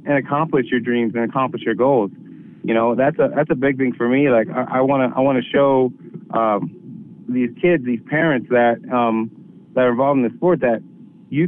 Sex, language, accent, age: male, English, American, 30-49